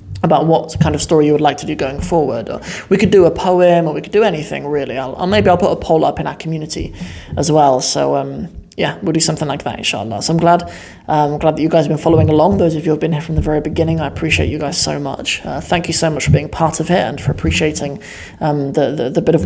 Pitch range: 150-175 Hz